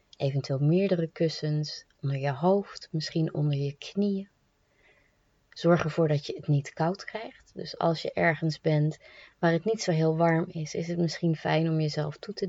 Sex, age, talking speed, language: female, 20-39, 185 wpm, Dutch